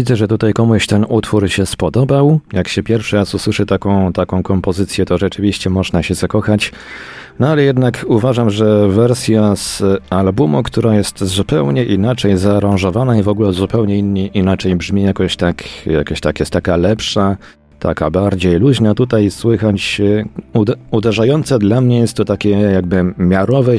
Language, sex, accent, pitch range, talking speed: Polish, male, native, 90-115 Hz, 150 wpm